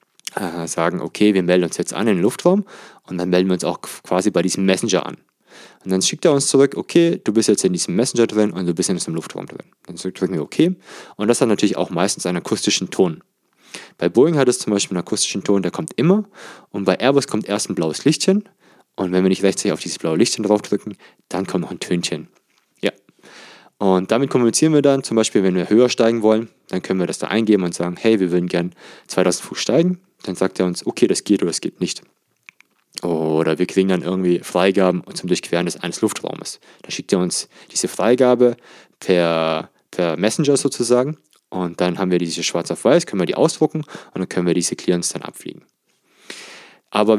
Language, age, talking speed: German, 20-39, 215 wpm